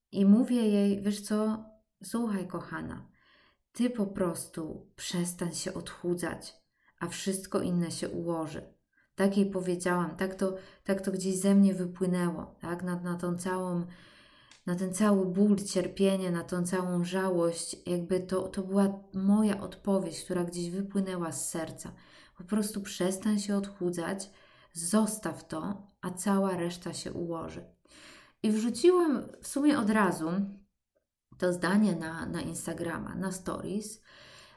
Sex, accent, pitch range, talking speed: female, native, 170-195 Hz, 135 wpm